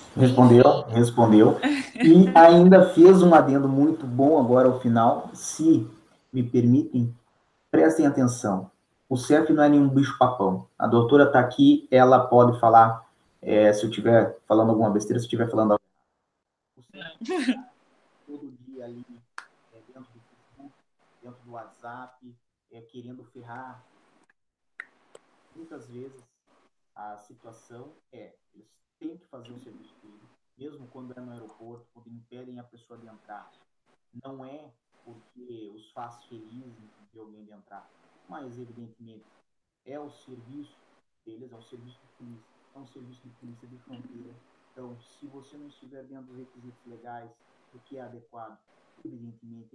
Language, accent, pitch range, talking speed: Portuguese, Brazilian, 115-135 Hz, 145 wpm